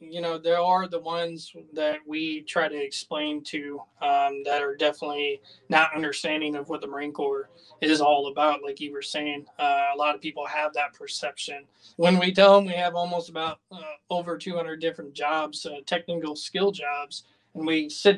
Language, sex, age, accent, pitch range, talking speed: English, male, 20-39, American, 145-165 Hz, 190 wpm